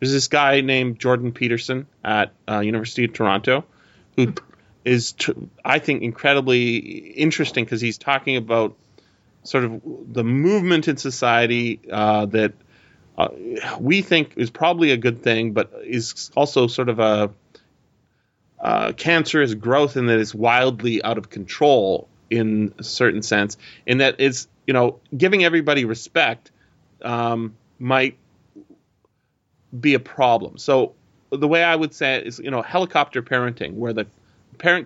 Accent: American